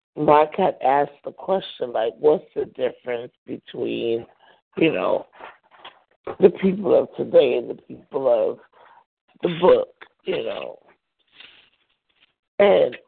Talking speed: 115 wpm